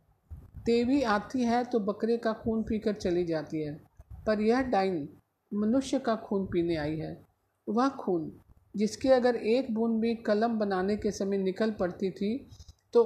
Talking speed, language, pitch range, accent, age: 160 wpm, Hindi, 180-235 Hz, native, 50-69